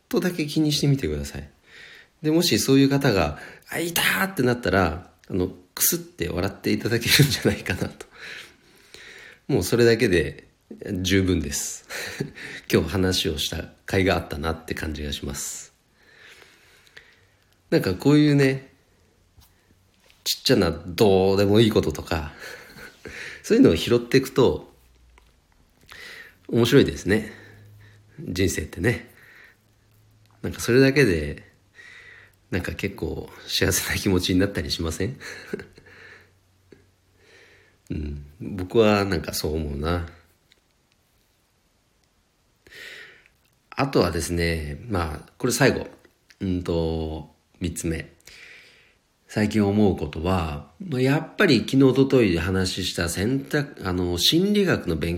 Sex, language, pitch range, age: male, Japanese, 85-115 Hz, 40-59